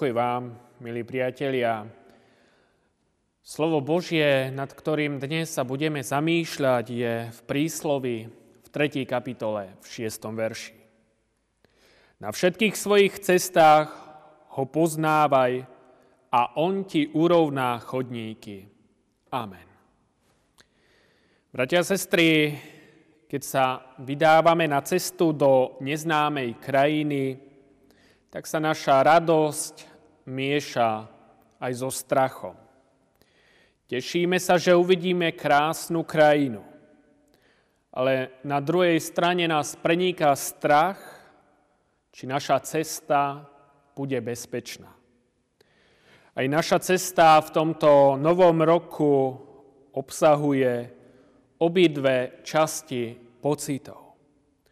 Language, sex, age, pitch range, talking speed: Slovak, male, 30-49, 130-160 Hz, 90 wpm